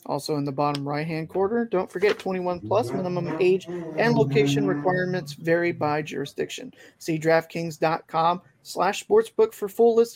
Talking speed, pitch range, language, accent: 135 wpm, 165-210 Hz, English, American